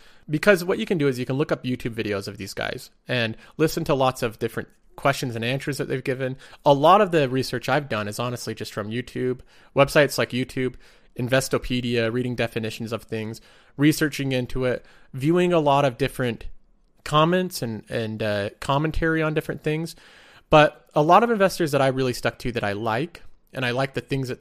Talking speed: 200 wpm